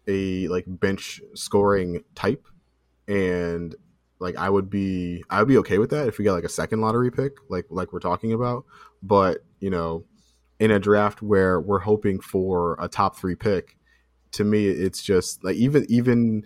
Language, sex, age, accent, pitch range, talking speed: English, male, 20-39, American, 85-105 Hz, 180 wpm